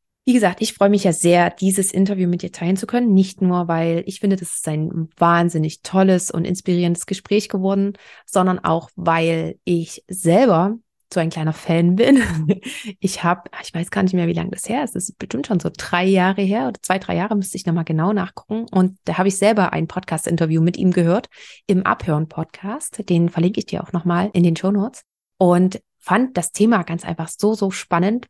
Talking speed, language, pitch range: 210 wpm, German, 165-195 Hz